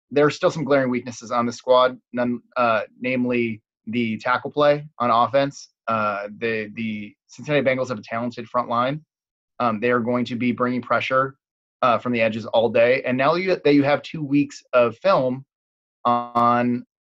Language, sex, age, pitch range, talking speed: English, male, 20-39, 115-135 Hz, 185 wpm